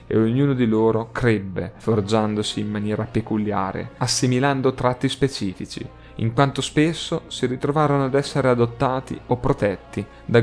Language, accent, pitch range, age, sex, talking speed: Italian, native, 105-135 Hz, 30-49, male, 130 wpm